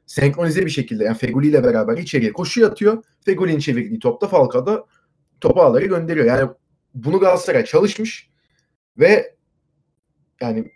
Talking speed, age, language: 125 wpm, 30-49, Turkish